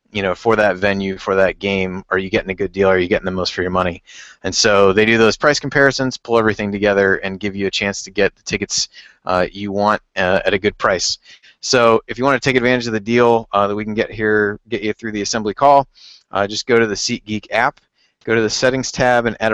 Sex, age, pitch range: male, 30-49, 95-120 Hz